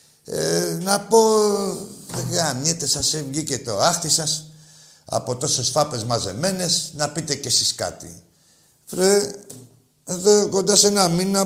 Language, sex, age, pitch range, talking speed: Greek, male, 50-69, 130-180 Hz, 130 wpm